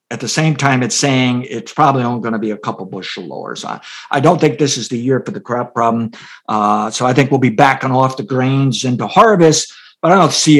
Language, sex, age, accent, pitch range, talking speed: English, male, 50-69, American, 120-145 Hz, 250 wpm